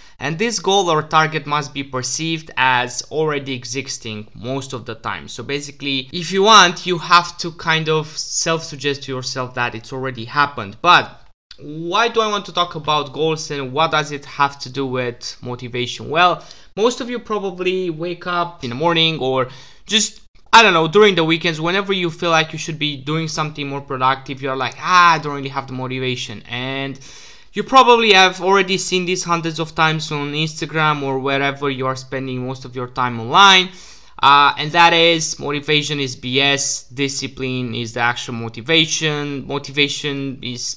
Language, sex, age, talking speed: English, male, 20-39, 185 wpm